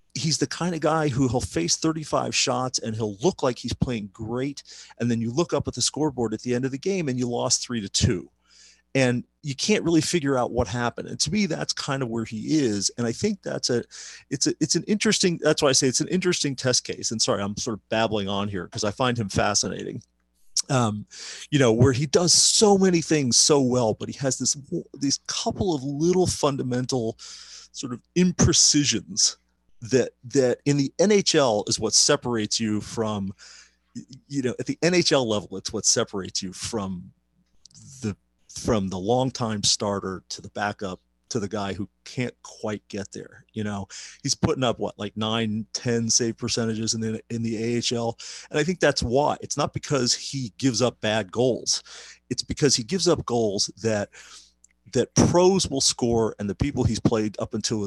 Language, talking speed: English, 200 wpm